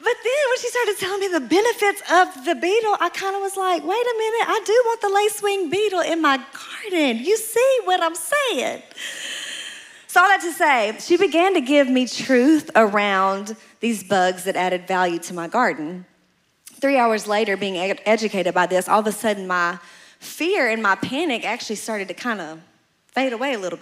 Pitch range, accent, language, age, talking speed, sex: 195-315 Hz, American, English, 30-49, 200 wpm, female